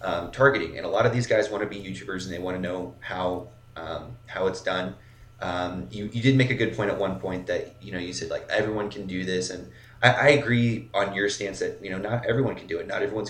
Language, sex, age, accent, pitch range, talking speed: English, male, 30-49, American, 100-120 Hz, 270 wpm